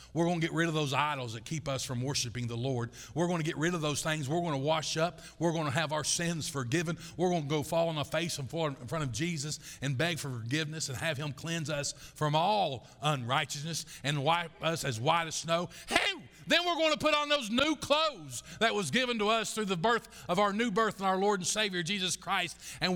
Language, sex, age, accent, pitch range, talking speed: English, male, 50-69, American, 145-205 Hz, 250 wpm